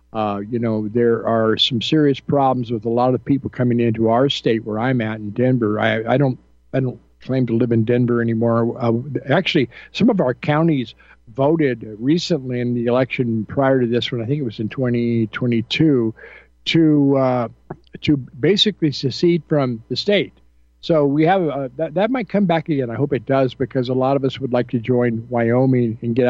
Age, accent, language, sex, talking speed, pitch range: 50-69, American, English, male, 200 wpm, 115-145 Hz